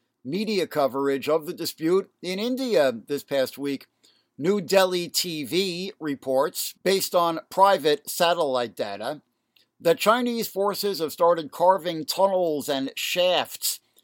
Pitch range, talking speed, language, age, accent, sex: 140-195 Hz, 120 wpm, English, 60-79, American, male